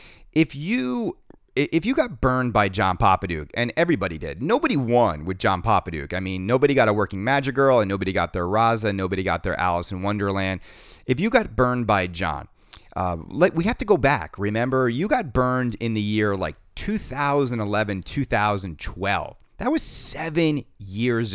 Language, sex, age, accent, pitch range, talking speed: English, male, 30-49, American, 95-130 Hz, 175 wpm